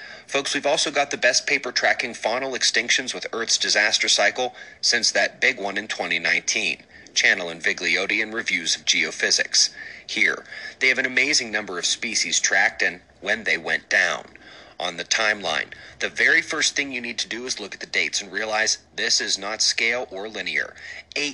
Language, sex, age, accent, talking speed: English, male, 30-49, American, 180 wpm